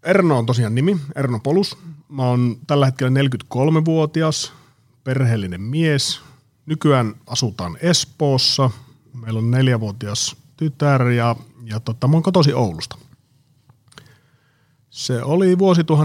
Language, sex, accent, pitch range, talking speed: Finnish, male, native, 115-140 Hz, 110 wpm